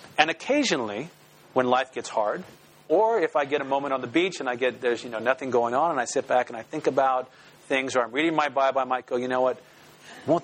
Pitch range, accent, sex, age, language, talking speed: 130-160 Hz, American, male, 40-59, English, 260 wpm